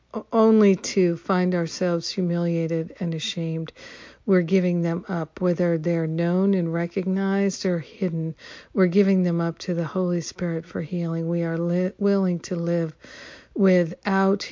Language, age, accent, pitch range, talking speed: English, 50-69, American, 170-190 Hz, 145 wpm